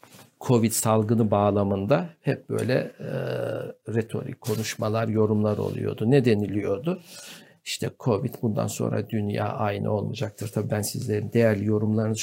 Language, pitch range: Turkish, 105-130 Hz